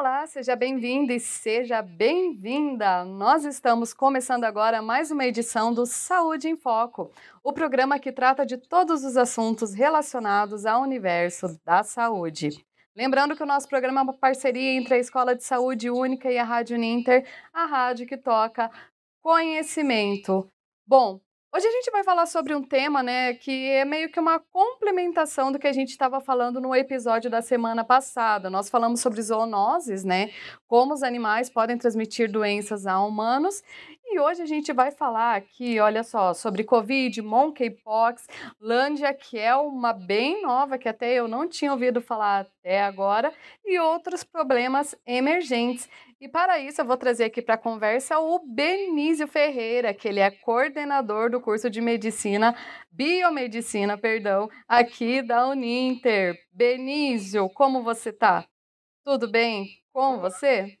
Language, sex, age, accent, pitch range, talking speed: Portuguese, female, 30-49, Brazilian, 225-280 Hz, 155 wpm